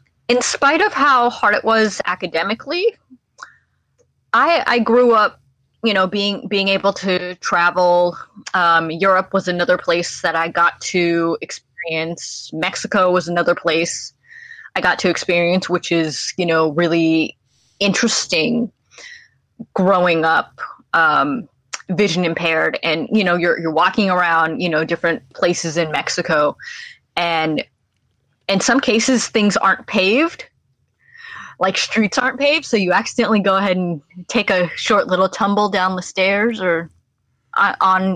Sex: female